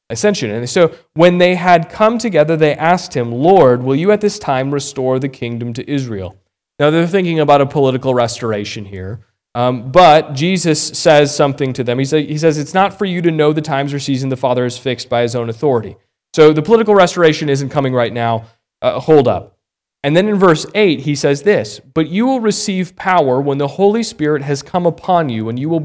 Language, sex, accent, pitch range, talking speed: English, male, American, 130-175 Hz, 220 wpm